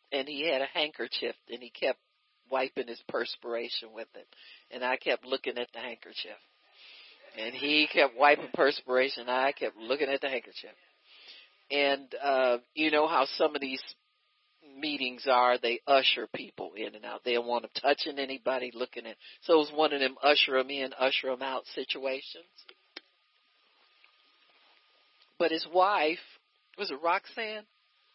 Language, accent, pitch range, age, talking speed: English, American, 130-165 Hz, 50-69, 160 wpm